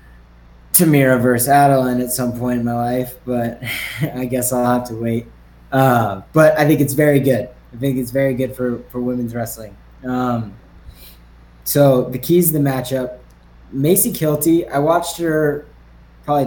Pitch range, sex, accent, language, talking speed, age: 120-145 Hz, male, American, English, 165 wpm, 10-29